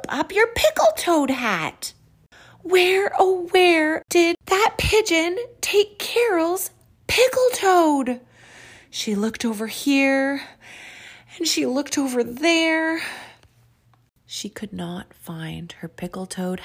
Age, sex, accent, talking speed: 30-49, female, American, 110 wpm